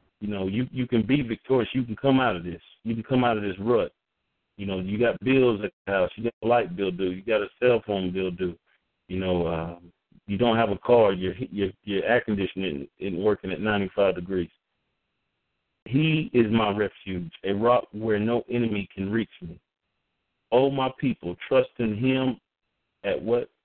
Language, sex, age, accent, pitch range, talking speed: English, male, 40-59, American, 95-120 Hz, 200 wpm